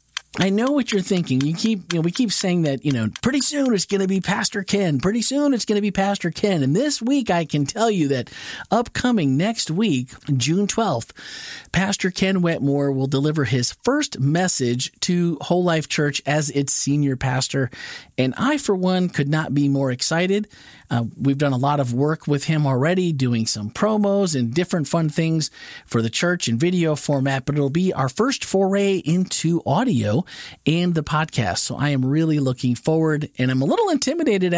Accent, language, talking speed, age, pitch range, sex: American, English, 200 wpm, 40-59, 135-190 Hz, male